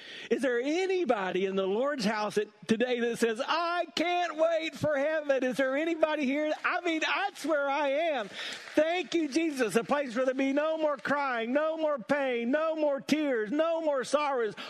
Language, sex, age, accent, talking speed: English, male, 50-69, American, 185 wpm